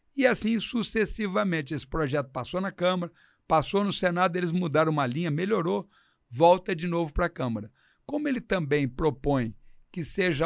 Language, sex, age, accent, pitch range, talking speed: Portuguese, male, 60-79, Brazilian, 145-185 Hz, 160 wpm